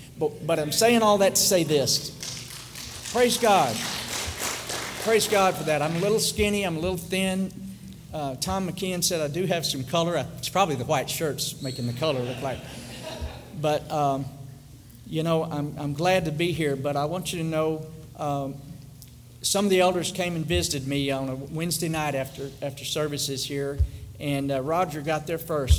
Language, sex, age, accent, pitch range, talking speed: English, male, 50-69, American, 130-160 Hz, 190 wpm